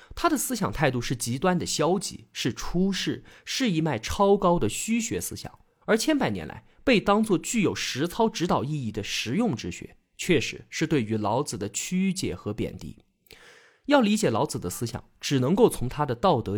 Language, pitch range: Chinese, 115-190 Hz